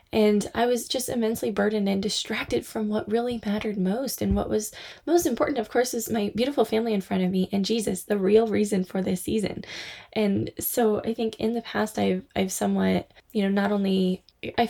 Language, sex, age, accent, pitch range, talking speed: English, female, 10-29, American, 185-225 Hz, 210 wpm